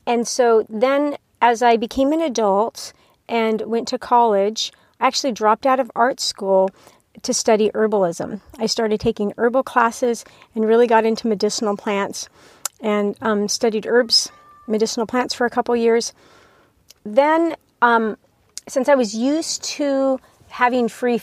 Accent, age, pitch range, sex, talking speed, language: American, 40-59, 210-250 Hz, female, 145 wpm, English